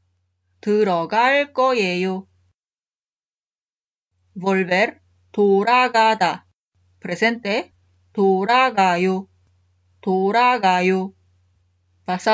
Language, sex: Korean, female